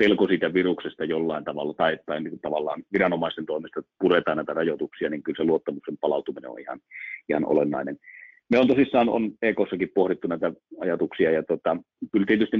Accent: native